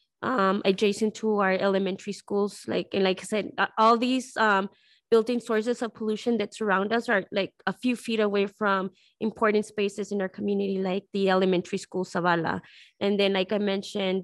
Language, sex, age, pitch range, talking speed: English, female, 20-39, 195-225 Hz, 180 wpm